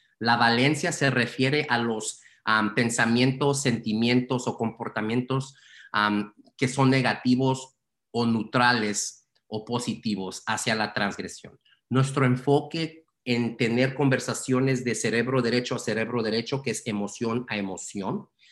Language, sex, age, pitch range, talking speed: Spanish, male, 40-59, 110-130 Hz, 115 wpm